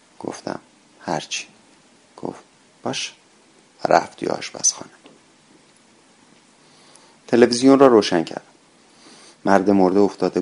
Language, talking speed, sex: Persian, 85 wpm, male